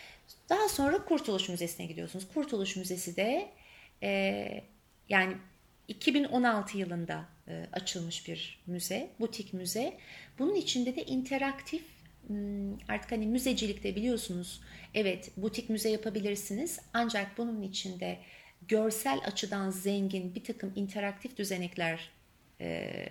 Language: Turkish